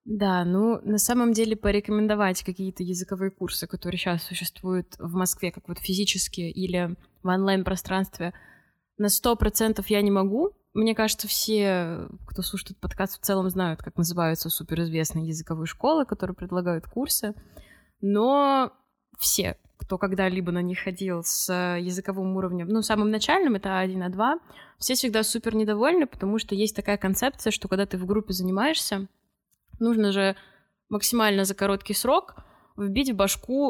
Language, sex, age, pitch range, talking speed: Russian, female, 20-39, 185-215 Hz, 145 wpm